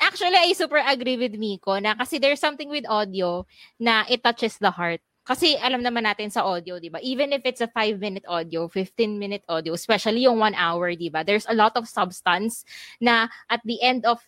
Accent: native